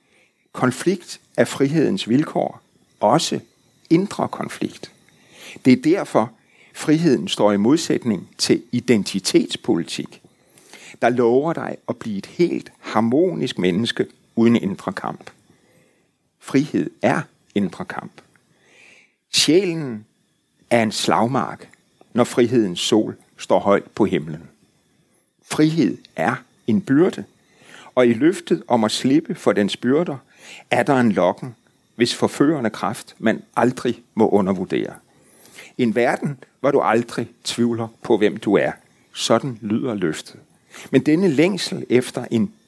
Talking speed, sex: 120 wpm, male